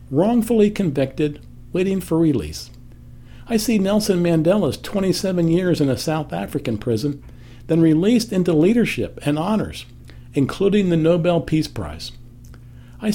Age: 60-79